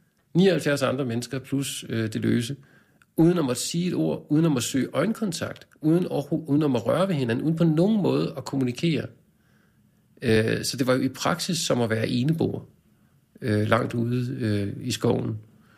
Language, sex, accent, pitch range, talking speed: Danish, male, native, 120-160 Hz, 185 wpm